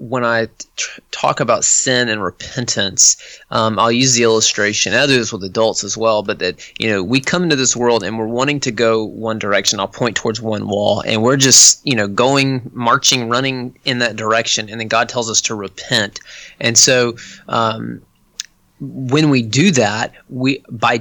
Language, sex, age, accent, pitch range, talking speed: English, male, 20-39, American, 110-130 Hz, 195 wpm